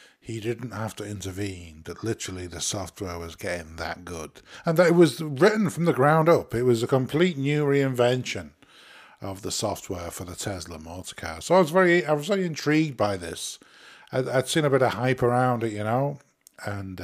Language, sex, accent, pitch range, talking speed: English, male, British, 105-140 Hz, 205 wpm